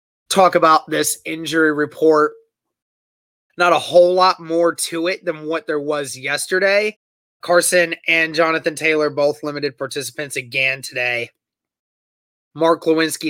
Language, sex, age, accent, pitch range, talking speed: English, male, 20-39, American, 140-165 Hz, 125 wpm